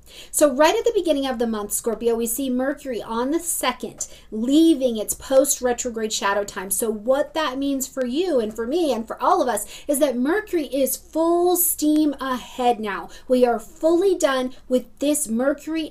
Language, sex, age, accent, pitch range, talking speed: English, female, 40-59, American, 220-275 Hz, 185 wpm